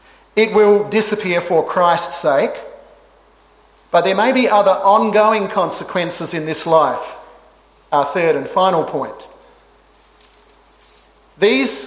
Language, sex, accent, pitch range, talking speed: English, male, Australian, 175-210 Hz, 110 wpm